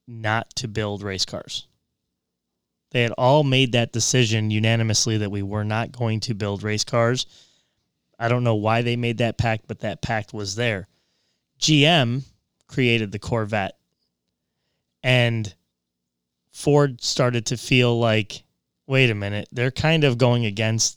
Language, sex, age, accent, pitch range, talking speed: English, male, 20-39, American, 105-125 Hz, 150 wpm